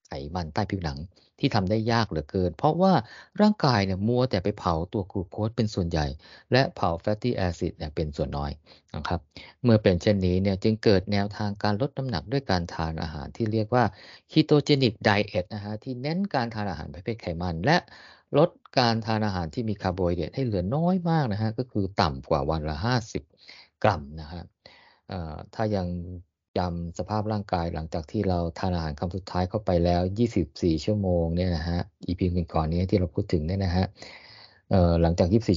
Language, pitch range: Thai, 85-105 Hz